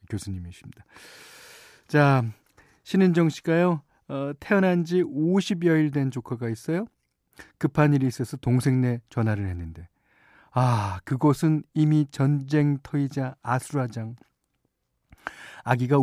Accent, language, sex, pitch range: native, Korean, male, 115-160 Hz